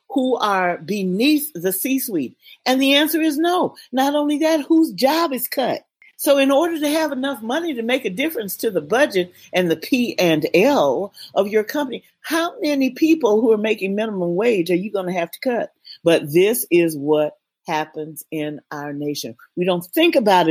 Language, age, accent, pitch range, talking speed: English, 40-59, American, 175-270 Hz, 195 wpm